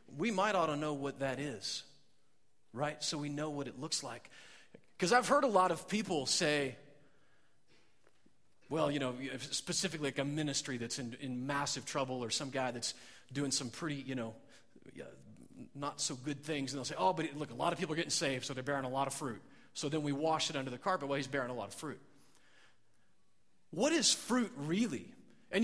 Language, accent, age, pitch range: English, American, 30-49, 140-165 Hz